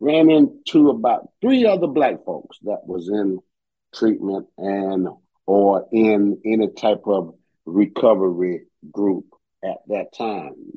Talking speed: 130 wpm